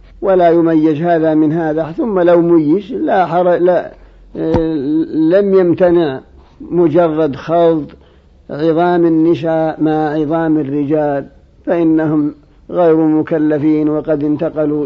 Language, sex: Arabic, male